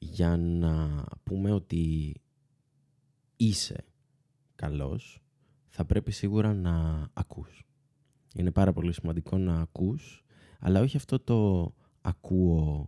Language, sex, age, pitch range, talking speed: Greek, male, 20-39, 85-125 Hz, 100 wpm